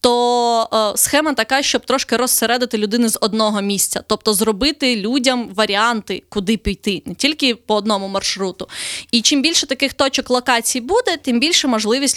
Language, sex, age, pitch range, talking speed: Ukrainian, female, 20-39, 210-255 Hz, 155 wpm